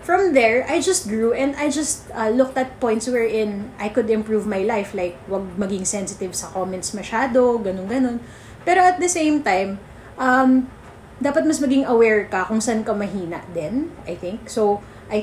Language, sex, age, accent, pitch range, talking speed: English, female, 20-39, Filipino, 190-250 Hz, 180 wpm